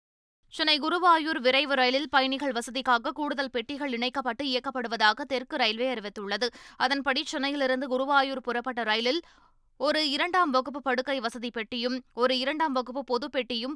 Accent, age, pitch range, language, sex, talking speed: native, 20-39, 240-280 Hz, Tamil, female, 125 wpm